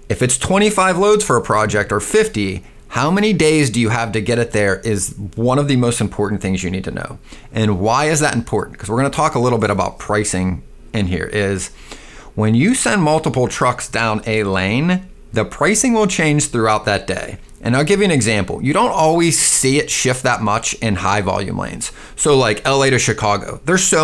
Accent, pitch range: American, 105-155 Hz